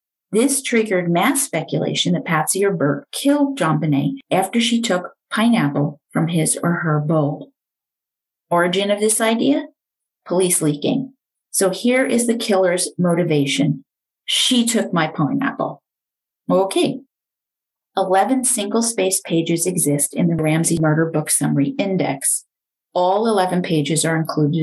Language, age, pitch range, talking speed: English, 40-59, 160-235 Hz, 130 wpm